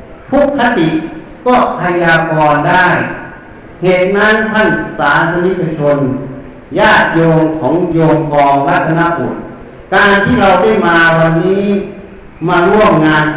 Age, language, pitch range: 60-79, Thai, 155-195 Hz